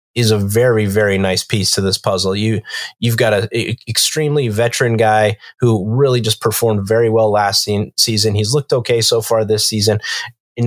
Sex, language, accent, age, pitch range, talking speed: male, English, American, 20-39, 105-120 Hz, 190 wpm